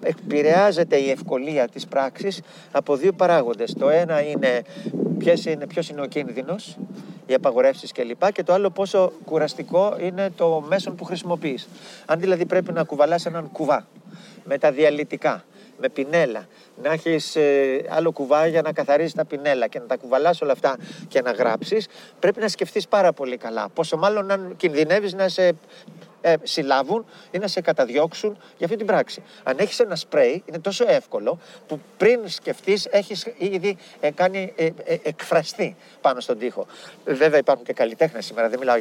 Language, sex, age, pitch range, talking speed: Greek, male, 40-59, 155-200 Hz, 160 wpm